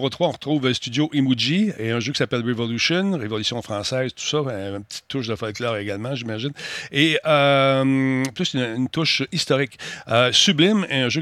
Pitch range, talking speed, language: 115-145 Hz, 200 wpm, French